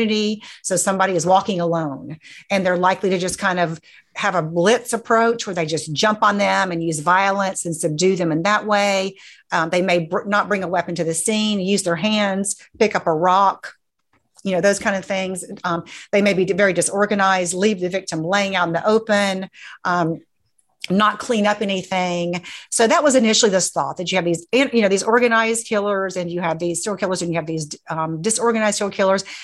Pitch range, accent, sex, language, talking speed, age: 180-215 Hz, American, female, English, 210 wpm, 40-59